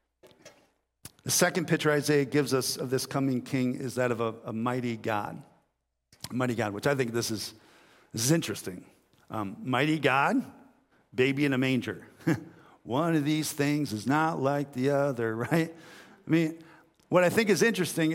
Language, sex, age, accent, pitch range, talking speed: English, male, 50-69, American, 110-145 Hz, 170 wpm